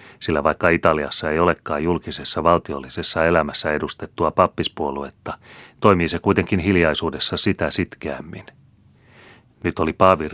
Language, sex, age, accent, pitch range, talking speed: Finnish, male, 30-49, native, 80-95 Hz, 110 wpm